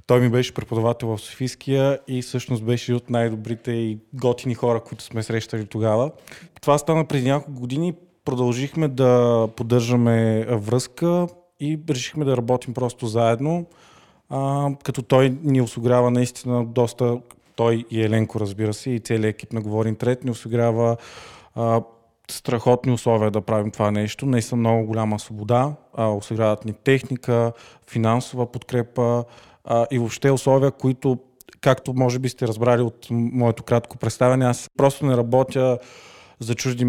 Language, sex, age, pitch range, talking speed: Bulgarian, male, 20-39, 115-130 Hz, 145 wpm